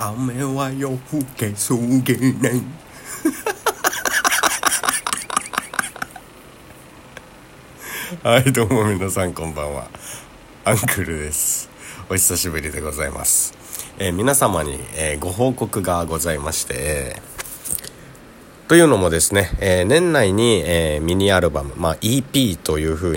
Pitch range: 80-120 Hz